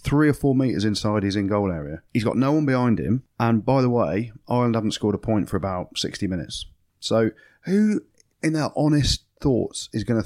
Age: 30-49